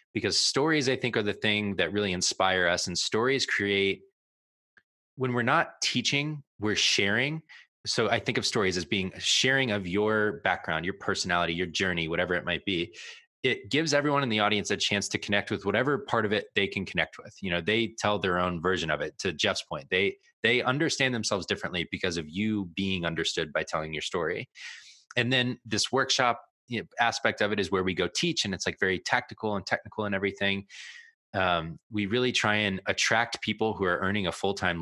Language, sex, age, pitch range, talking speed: English, male, 20-39, 95-120 Hz, 205 wpm